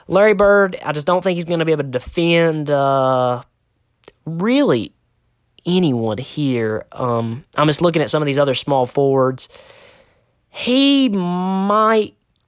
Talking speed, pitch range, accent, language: 145 wpm, 135-180 Hz, American, English